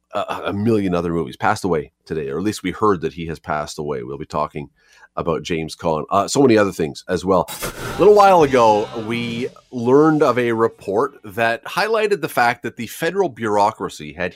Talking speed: 205 wpm